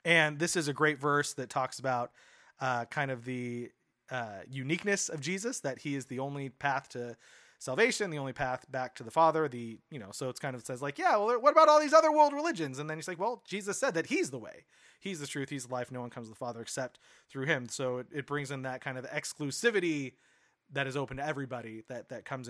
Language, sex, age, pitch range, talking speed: English, male, 30-49, 130-170 Hz, 250 wpm